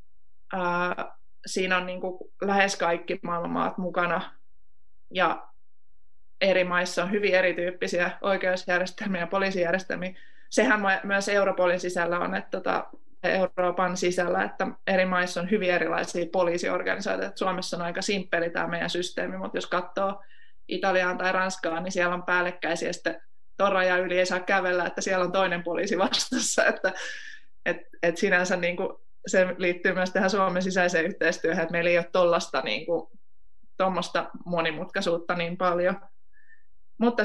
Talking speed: 130 wpm